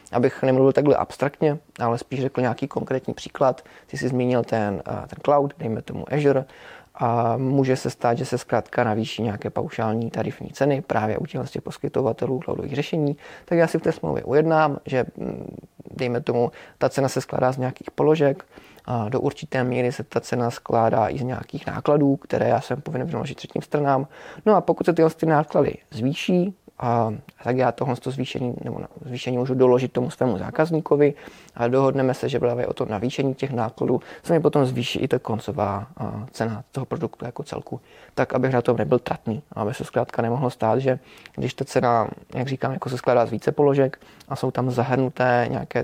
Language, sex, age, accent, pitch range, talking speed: Czech, male, 30-49, native, 120-140 Hz, 185 wpm